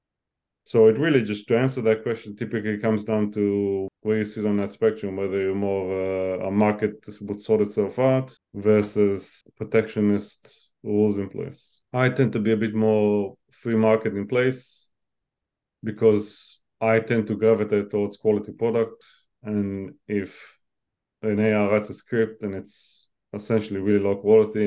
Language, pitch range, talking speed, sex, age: English, 100-115 Hz, 160 wpm, male, 30-49